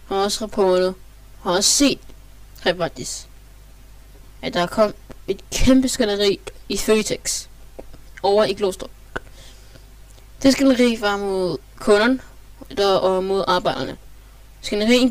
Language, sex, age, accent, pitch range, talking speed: Danish, female, 20-39, native, 130-200 Hz, 105 wpm